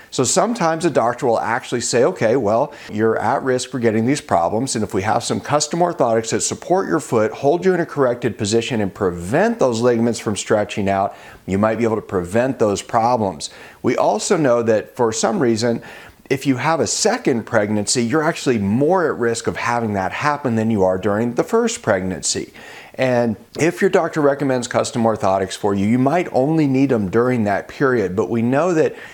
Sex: male